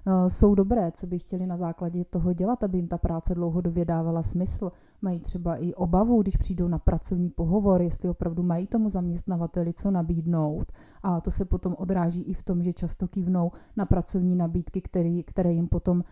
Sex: female